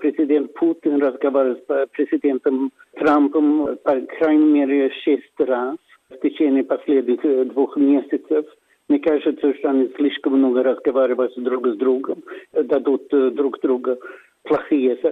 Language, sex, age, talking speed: Russian, male, 60-79, 120 wpm